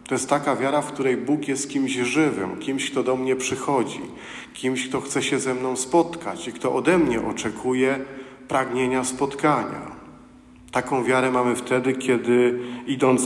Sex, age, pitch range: male, 40-59, 120-135 Hz